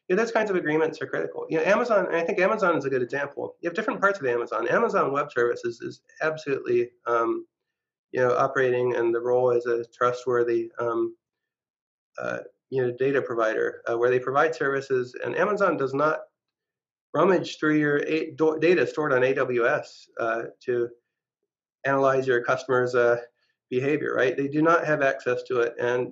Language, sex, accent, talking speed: English, male, American, 170 wpm